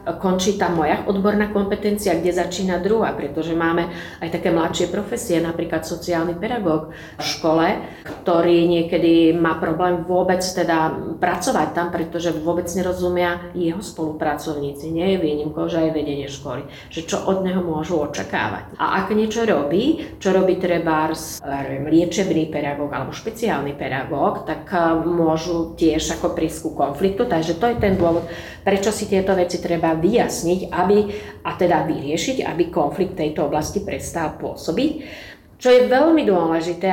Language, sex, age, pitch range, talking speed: Slovak, female, 30-49, 165-190 Hz, 145 wpm